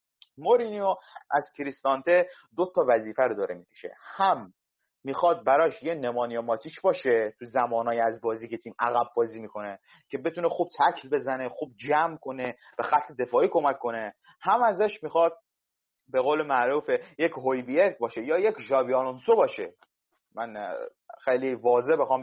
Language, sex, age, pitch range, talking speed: Persian, male, 30-49, 130-215 Hz, 150 wpm